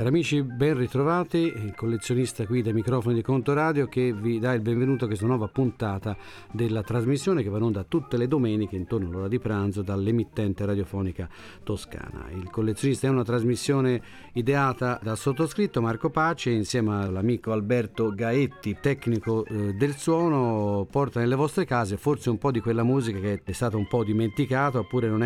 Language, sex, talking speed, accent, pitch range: Italian, male, 170 wpm, native, 105-130 Hz